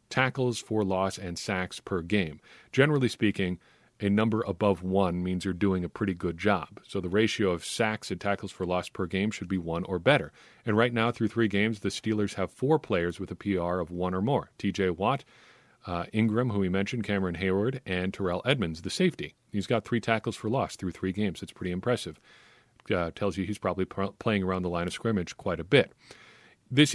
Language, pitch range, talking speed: English, 95-115 Hz, 210 wpm